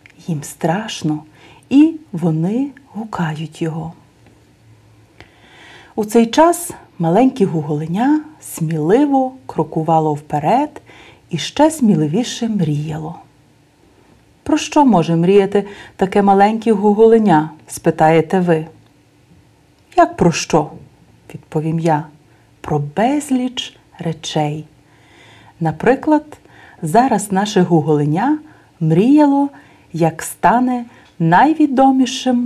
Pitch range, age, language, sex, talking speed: 160-245 Hz, 40-59, Bulgarian, female, 85 wpm